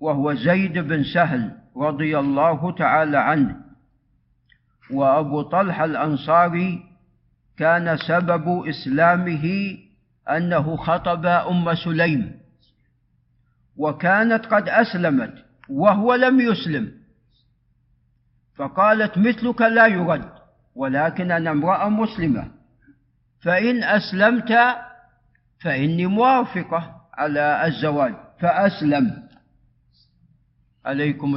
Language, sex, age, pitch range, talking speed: Arabic, male, 50-69, 140-185 Hz, 75 wpm